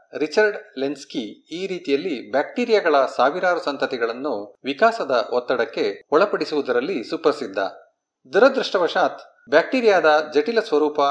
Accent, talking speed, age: native, 80 wpm, 40-59